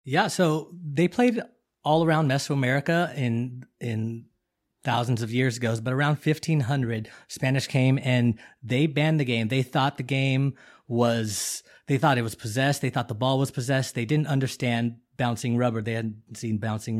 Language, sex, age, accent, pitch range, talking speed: English, male, 30-49, American, 115-135 Hz, 175 wpm